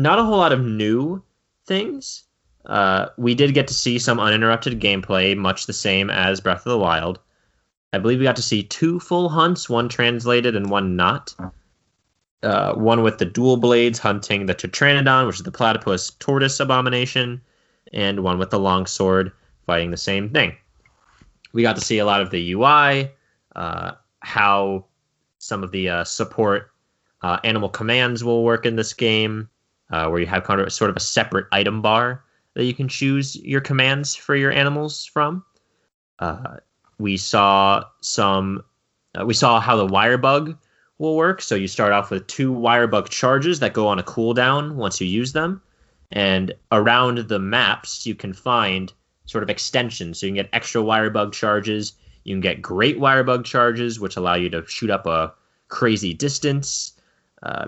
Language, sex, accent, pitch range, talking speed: English, male, American, 95-125 Hz, 180 wpm